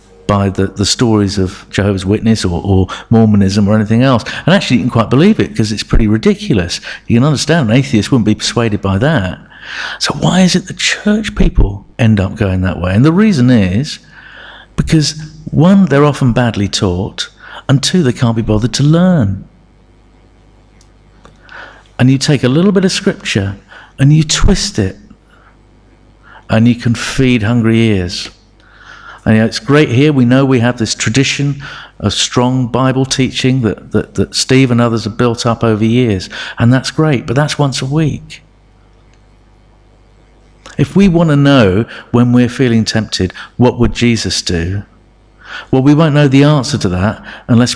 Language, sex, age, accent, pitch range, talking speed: English, male, 50-69, British, 100-135 Hz, 175 wpm